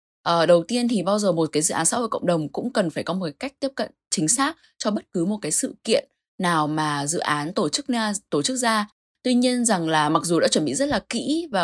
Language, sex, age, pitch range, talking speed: Vietnamese, female, 10-29, 160-230 Hz, 280 wpm